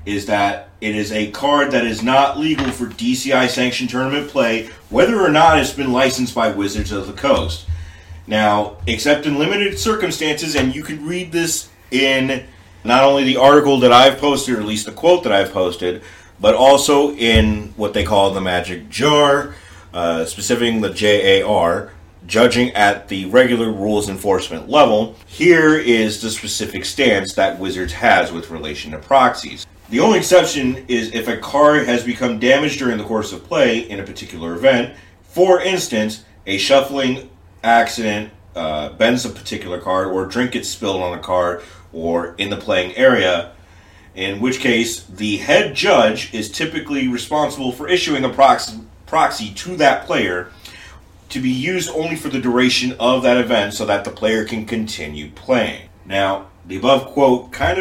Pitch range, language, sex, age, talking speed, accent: 95-130 Hz, English, male, 30-49, 170 wpm, American